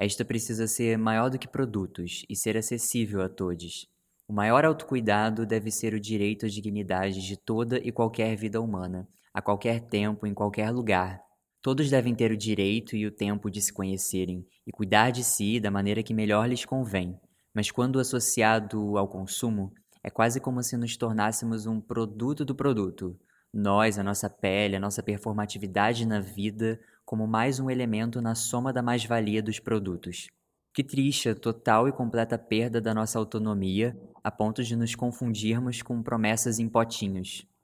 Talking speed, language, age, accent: 170 wpm, Portuguese, 20-39, Brazilian